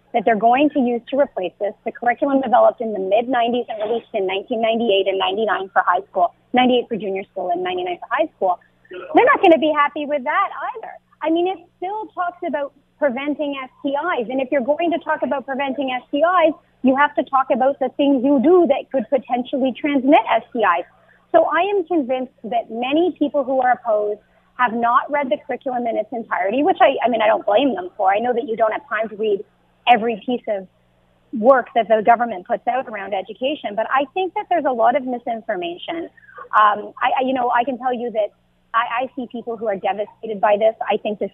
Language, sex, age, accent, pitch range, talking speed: English, female, 30-49, American, 220-290 Hz, 220 wpm